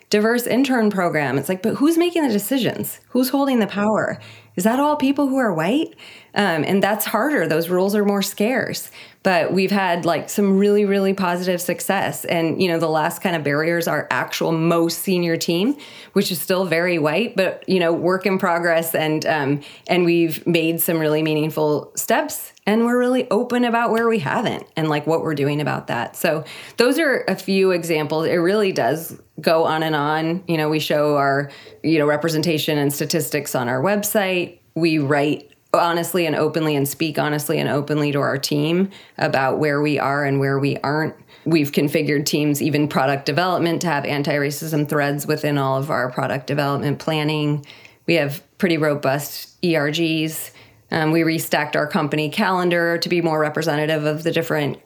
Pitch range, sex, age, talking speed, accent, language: 150-195 Hz, female, 20-39, 185 wpm, American, English